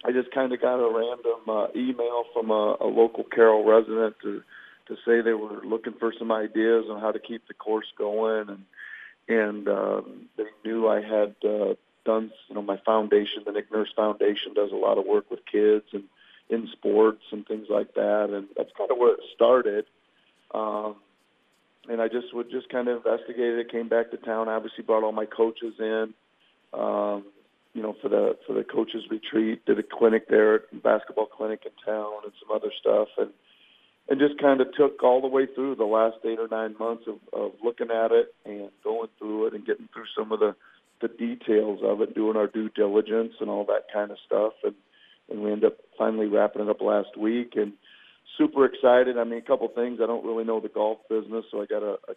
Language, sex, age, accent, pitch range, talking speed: English, male, 40-59, American, 105-135 Hz, 215 wpm